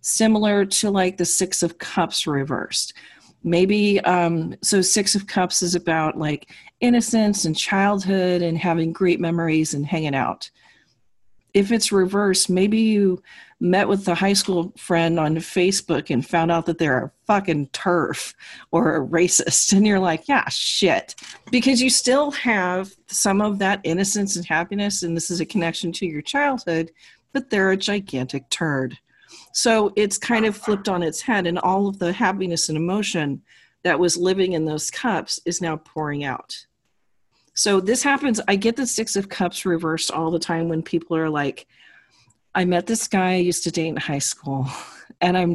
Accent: American